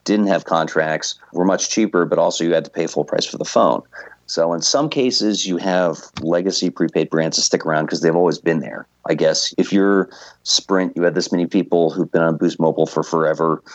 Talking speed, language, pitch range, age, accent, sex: 225 wpm, English, 80-95 Hz, 40-59, American, male